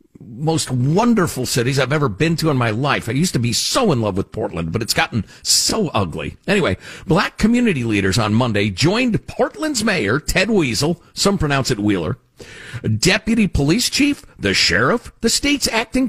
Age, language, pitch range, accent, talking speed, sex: 50-69, English, 120-195 Hz, American, 175 wpm, male